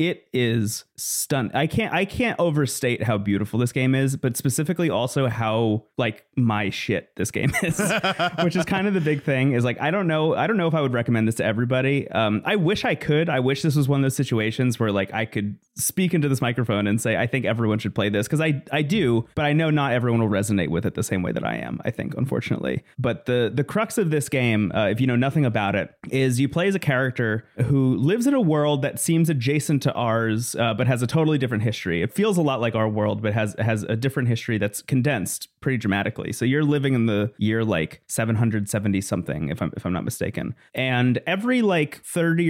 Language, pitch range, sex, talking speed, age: English, 110-145 Hz, male, 240 wpm, 30-49